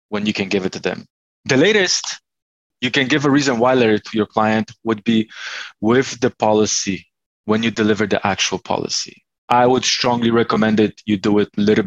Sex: male